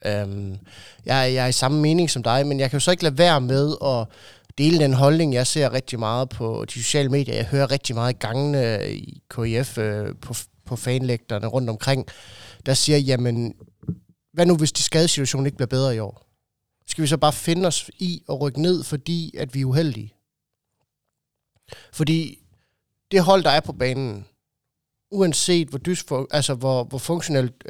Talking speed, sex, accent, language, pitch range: 185 wpm, male, native, Danish, 120-155 Hz